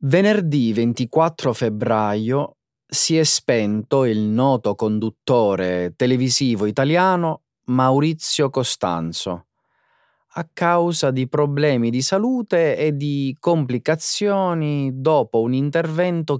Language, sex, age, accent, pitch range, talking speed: Italian, male, 30-49, native, 105-155 Hz, 90 wpm